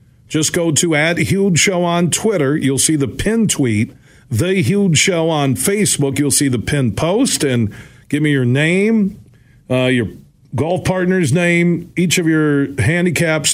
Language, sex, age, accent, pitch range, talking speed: English, male, 50-69, American, 130-160 Hz, 165 wpm